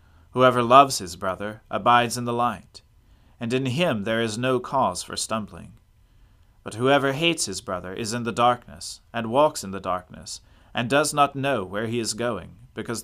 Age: 40-59